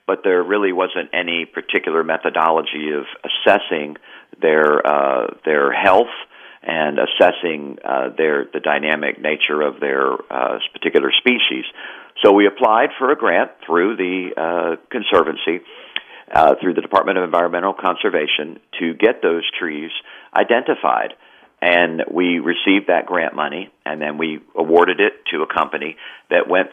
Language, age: English, 50-69